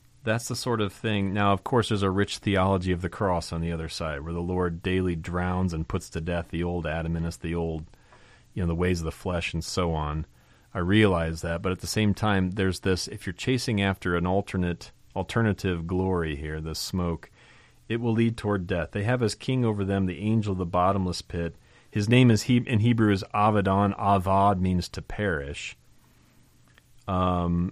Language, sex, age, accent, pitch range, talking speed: English, male, 30-49, American, 85-105 Hz, 205 wpm